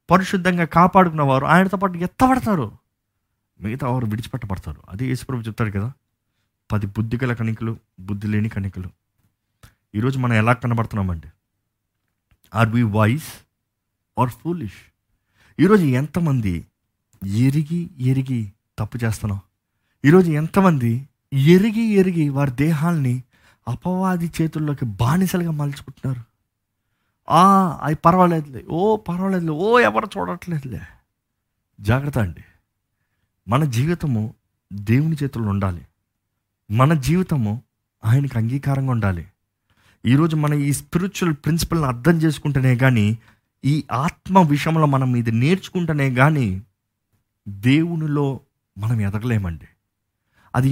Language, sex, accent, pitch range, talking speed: Telugu, male, native, 105-155 Hz, 100 wpm